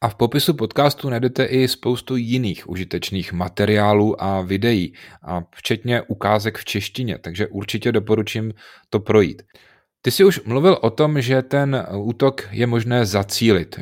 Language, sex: Czech, male